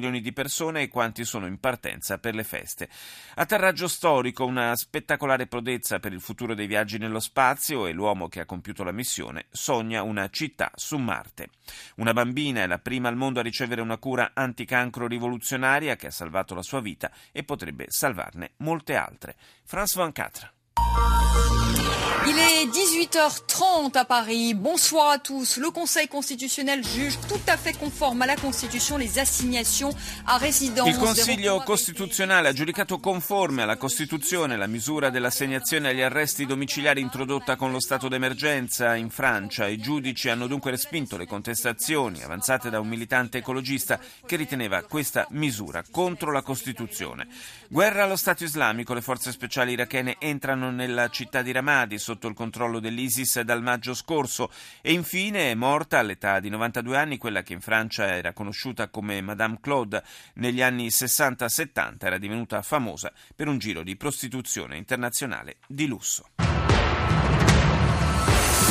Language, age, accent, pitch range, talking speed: Italian, 30-49, native, 115-165 Hz, 140 wpm